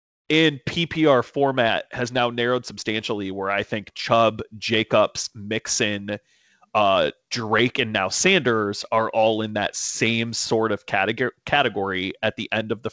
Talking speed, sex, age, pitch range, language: 150 wpm, male, 30-49, 105-135 Hz, English